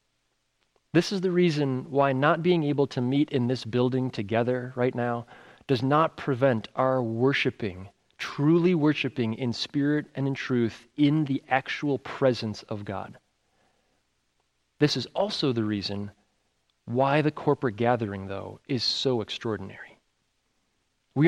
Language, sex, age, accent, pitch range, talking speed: English, male, 30-49, American, 125-170 Hz, 135 wpm